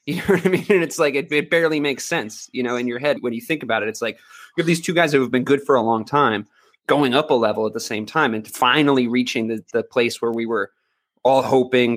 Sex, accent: male, American